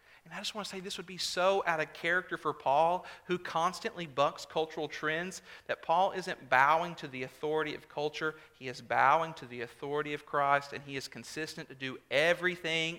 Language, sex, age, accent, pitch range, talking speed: English, male, 40-59, American, 125-175 Hz, 200 wpm